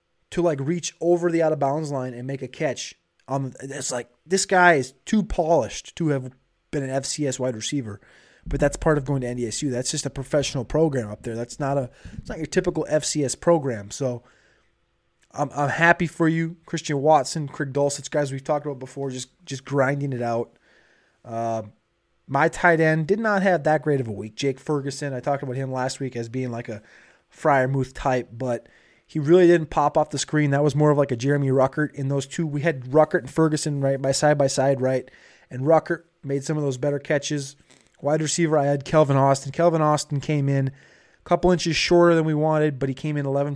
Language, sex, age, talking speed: English, male, 20-39, 215 wpm